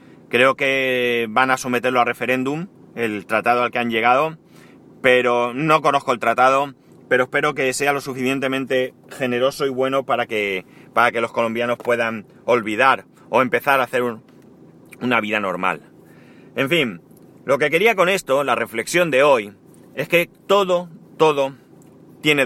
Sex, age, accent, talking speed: male, 30-49, Spanish, 160 wpm